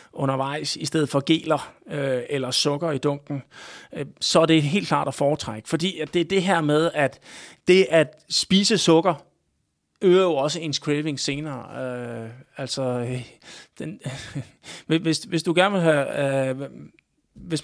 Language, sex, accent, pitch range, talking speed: Danish, male, native, 135-165 Hz, 135 wpm